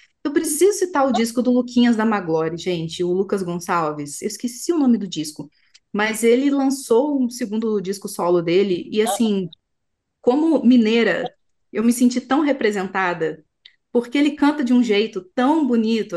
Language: Portuguese